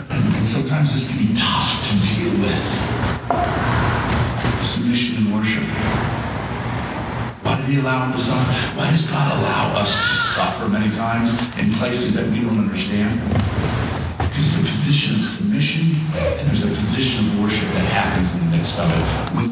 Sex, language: male, English